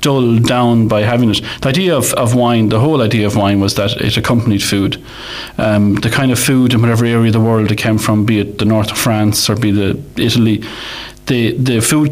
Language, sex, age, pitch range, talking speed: English, male, 30-49, 110-125 Hz, 240 wpm